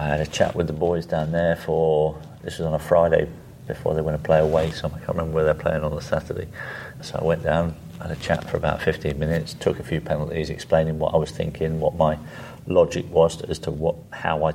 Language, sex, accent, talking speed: English, male, British, 250 wpm